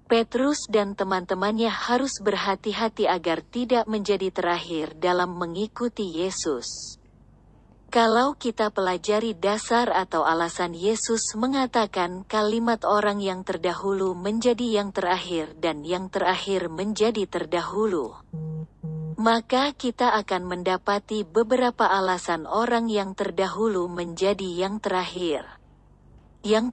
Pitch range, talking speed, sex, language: 185-230 Hz, 100 wpm, female, Indonesian